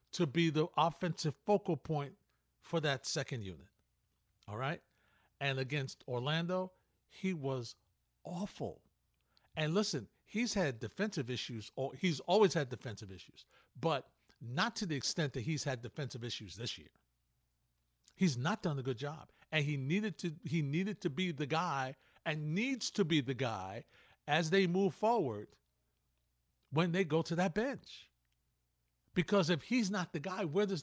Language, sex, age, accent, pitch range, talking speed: English, male, 50-69, American, 115-180 Hz, 155 wpm